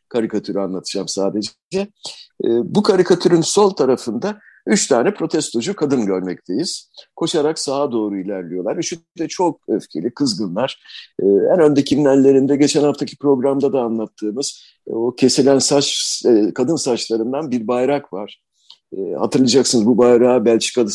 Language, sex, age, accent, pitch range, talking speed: Turkish, male, 50-69, native, 110-150 Hz, 115 wpm